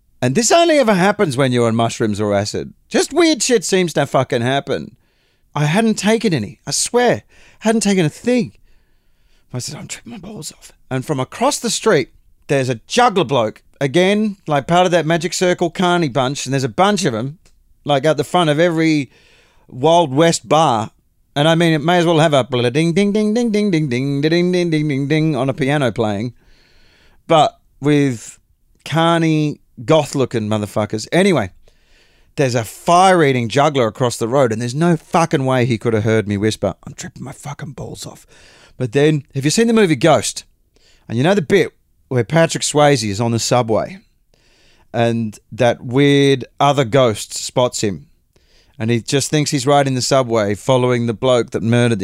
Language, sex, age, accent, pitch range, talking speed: English, male, 40-59, Australian, 120-170 Hz, 190 wpm